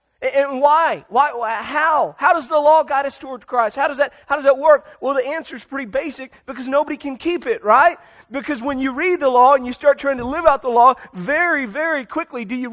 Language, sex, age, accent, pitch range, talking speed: English, male, 40-59, American, 215-280 Hz, 245 wpm